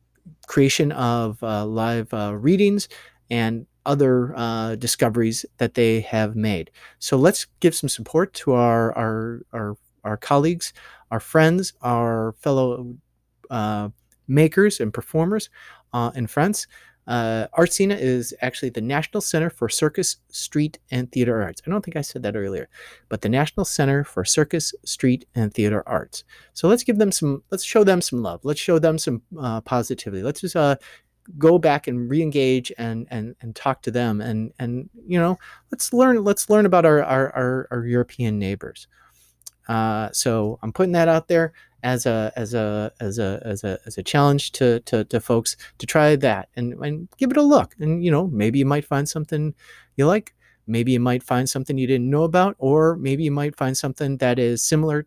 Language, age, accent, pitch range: English, 30-49, American, 115-155 Hz